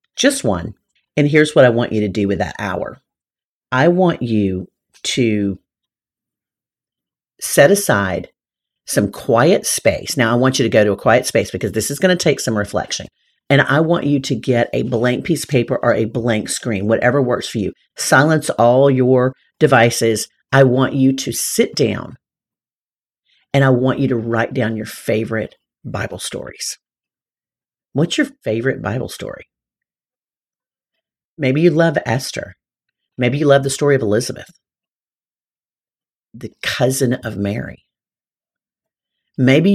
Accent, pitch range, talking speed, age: American, 115-145 Hz, 150 wpm, 50-69